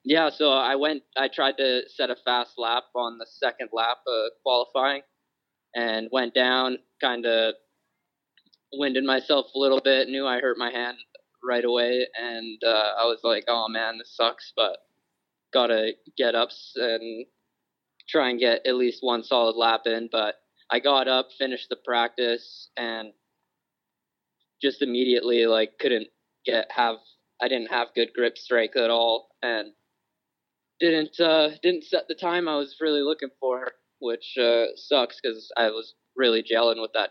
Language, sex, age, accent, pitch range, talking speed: English, male, 20-39, American, 115-135 Hz, 165 wpm